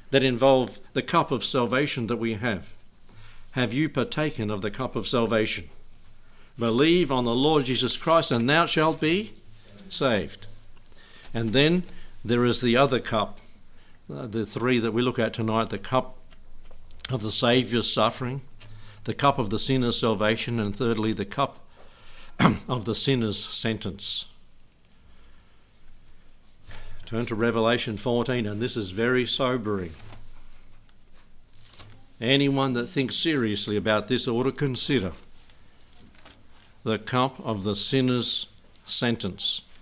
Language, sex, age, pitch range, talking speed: English, male, 60-79, 105-125 Hz, 130 wpm